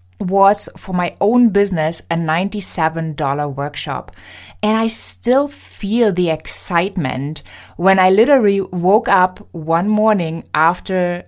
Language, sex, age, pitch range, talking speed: English, female, 20-39, 160-215 Hz, 115 wpm